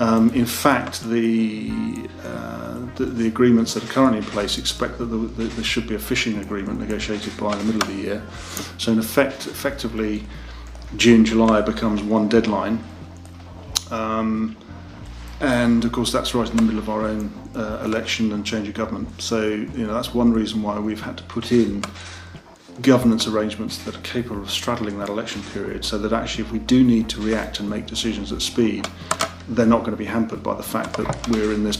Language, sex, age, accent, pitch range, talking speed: English, male, 40-59, British, 100-115 Hz, 200 wpm